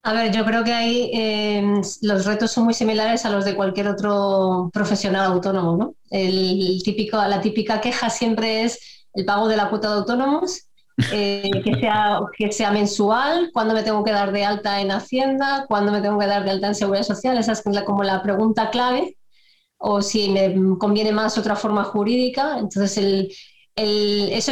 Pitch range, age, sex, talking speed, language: 200-230 Hz, 20-39, female, 195 wpm, Spanish